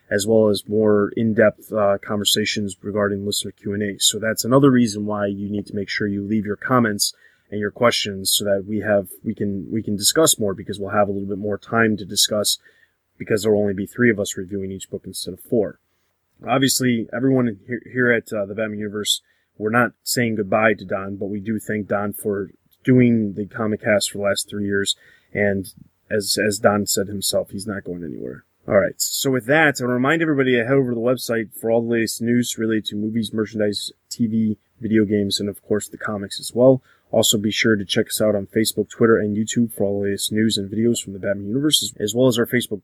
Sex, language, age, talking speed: male, English, 20-39, 225 wpm